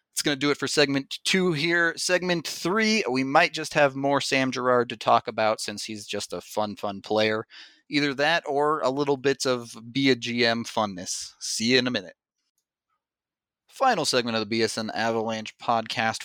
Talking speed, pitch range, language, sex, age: 190 wpm, 110-140 Hz, English, male, 30-49